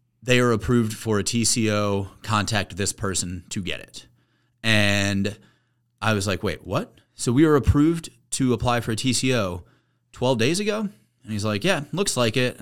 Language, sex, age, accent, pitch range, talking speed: English, male, 30-49, American, 100-120 Hz, 175 wpm